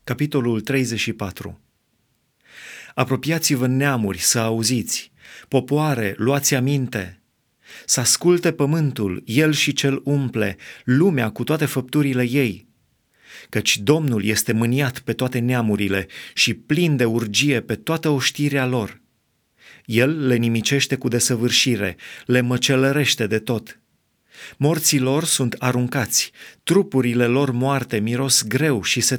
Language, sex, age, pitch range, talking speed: Romanian, male, 30-49, 115-145 Hz, 115 wpm